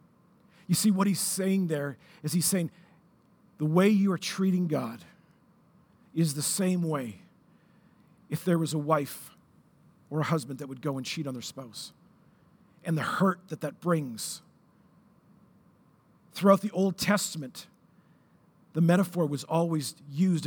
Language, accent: English, American